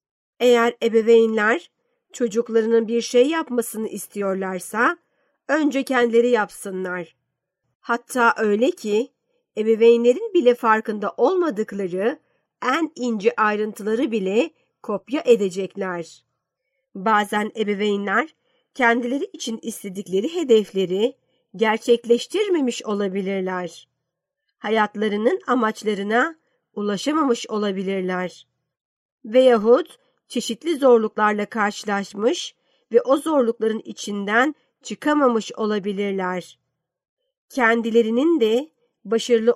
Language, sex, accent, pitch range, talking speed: Turkish, female, native, 205-250 Hz, 75 wpm